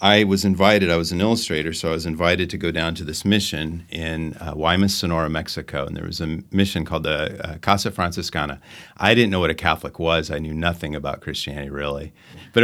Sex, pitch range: male, 80-95 Hz